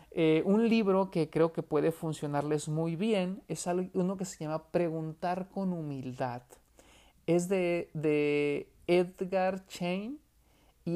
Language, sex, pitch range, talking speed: Spanish, male, 150-180 Hz, 130 wpm